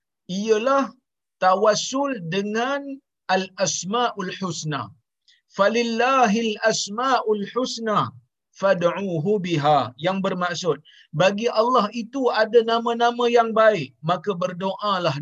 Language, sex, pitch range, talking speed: Malayalam, male, 165-235 Hz, 90 wpm